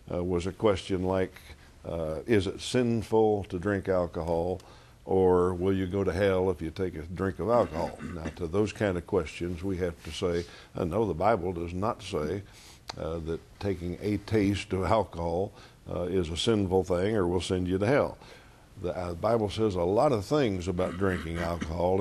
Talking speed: 190 wpm